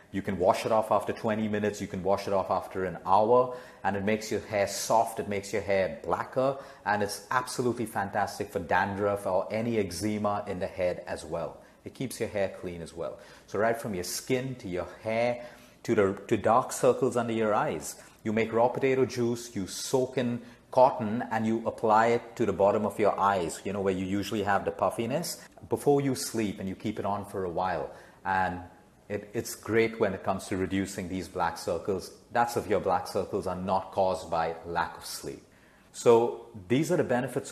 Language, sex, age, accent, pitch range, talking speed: English, male, 40-59, Indian, 95-120 Hz, 210 wpm